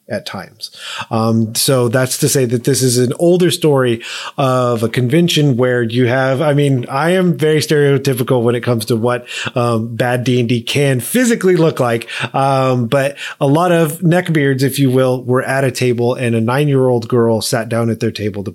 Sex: male